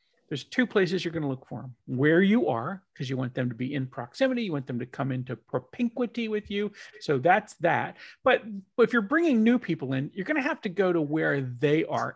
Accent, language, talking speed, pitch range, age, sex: American, English, 230 wpm, 130-185 Hz, 40-59, male